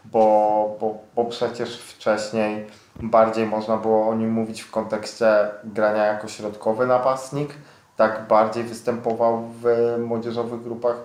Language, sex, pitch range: Polish, male, 110-120 Hz